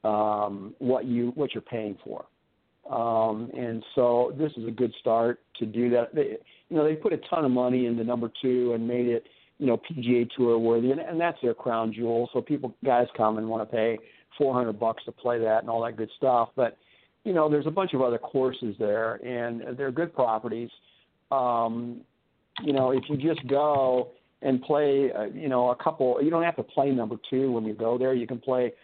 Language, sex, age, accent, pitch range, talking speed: English, male, 50-69, American, 115-135 Hz, 225 wpm